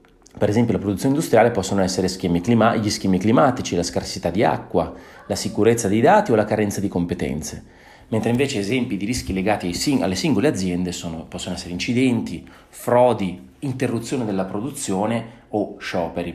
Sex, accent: male, native